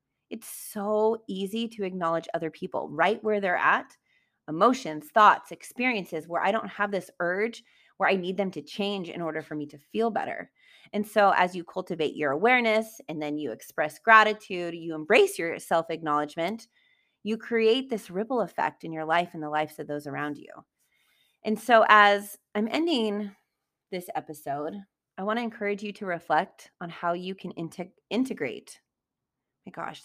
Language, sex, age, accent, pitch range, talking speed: English, female, 30-49, American, 165-220 Hz, 170 wpm